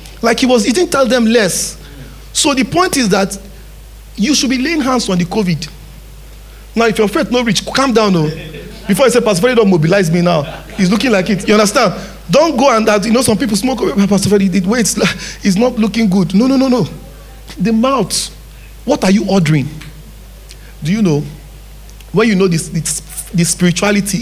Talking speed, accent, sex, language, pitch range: 205 wpm, Nigerian, male, English, 160-230 Hz